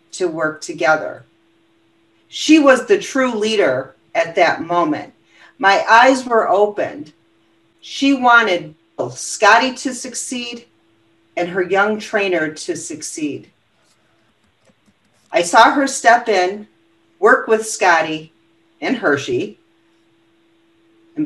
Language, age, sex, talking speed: English, 50-69, female, 105 wpm